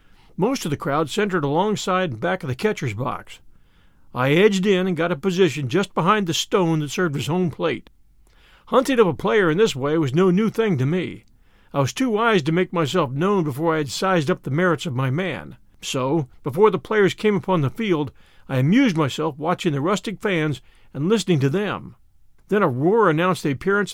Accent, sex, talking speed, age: American, male, 210 wpm, 50-69